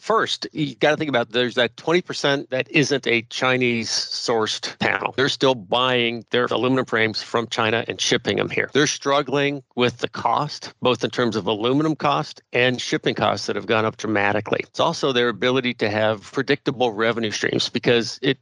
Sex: male